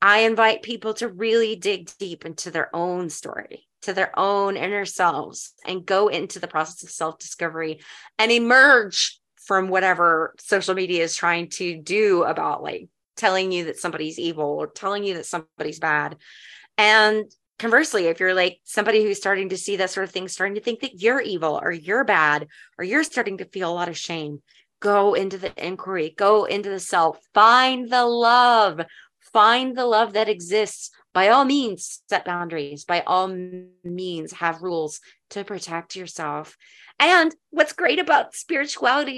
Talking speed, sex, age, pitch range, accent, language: 170 wpm, female, 30-49, 175-235 Hz, American, English